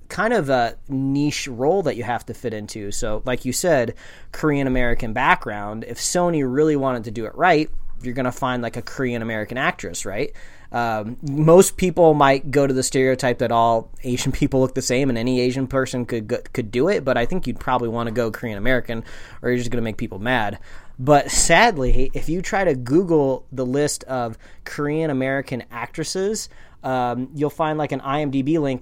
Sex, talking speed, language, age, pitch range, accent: male, 200 wpm, English, 20-39, 115-145 Hz, American